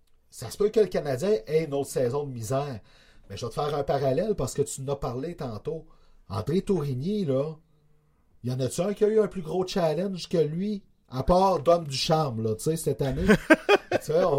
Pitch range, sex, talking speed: 135-185 Hz, male, 215 wpm